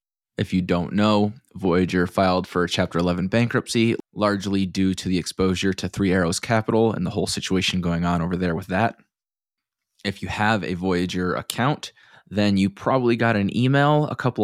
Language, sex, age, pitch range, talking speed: English, male, 20-39, 90-105 Hz, 180 wpm